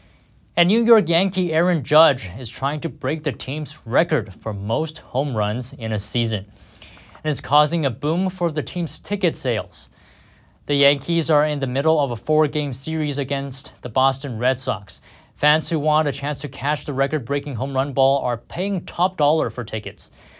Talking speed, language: 190 wpm, English